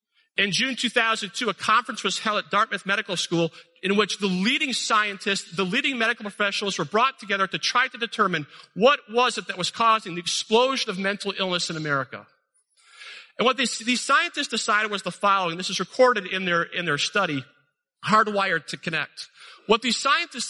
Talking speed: 180 wpm